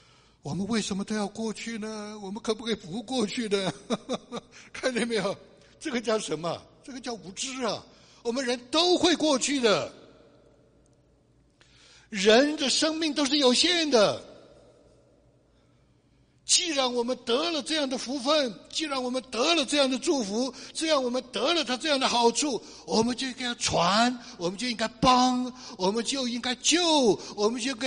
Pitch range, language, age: 195-270 Hz, Chinese, 60-79